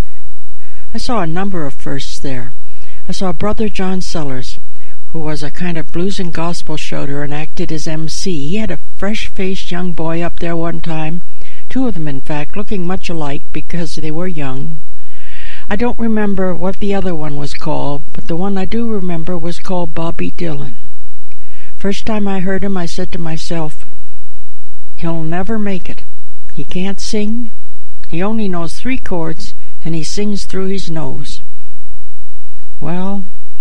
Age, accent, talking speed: 60-79, American, 170 wpm